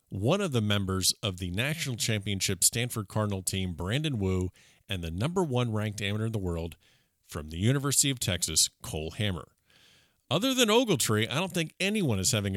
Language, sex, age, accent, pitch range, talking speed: English, male, 40-59, American, 95-130 Hz, 180 wpm